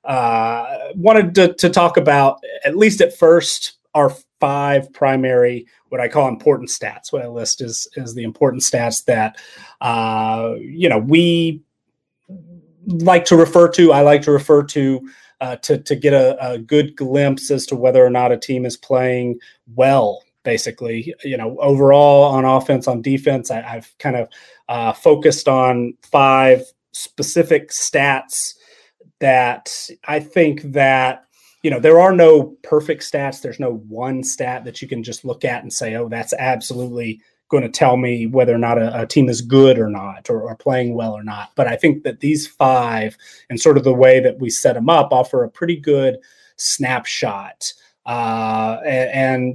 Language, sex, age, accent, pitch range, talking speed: English, male, 30-49, American, 120-150 Hz, 175 wpm